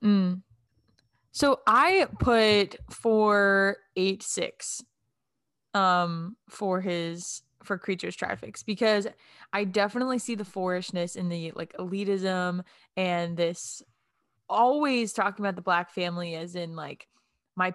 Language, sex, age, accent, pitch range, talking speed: English, female, 20-39, American, 170-210 Hz, 110 wpm